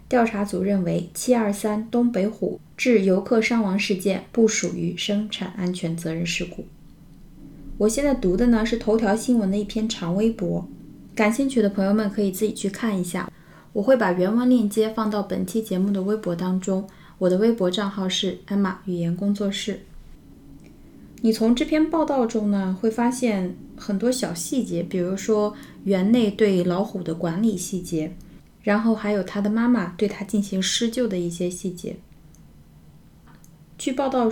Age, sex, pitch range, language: 20-39, female, 185-230 Hz, Chinese